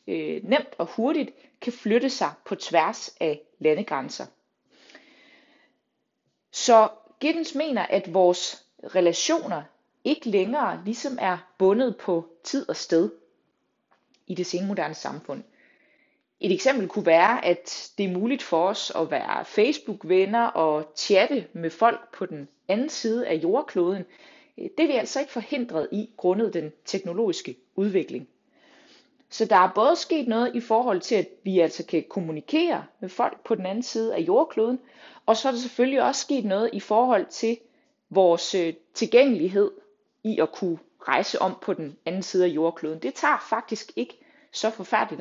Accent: native